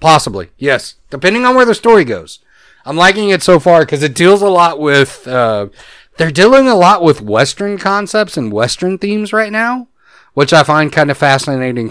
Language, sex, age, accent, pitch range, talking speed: English, male, 30-49, American, 105-140 Hz, 190 wpm